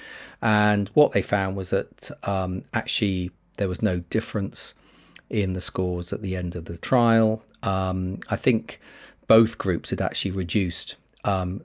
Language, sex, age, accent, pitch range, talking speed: English, male, 40-59, British, 90-105 Hz, 155 wpm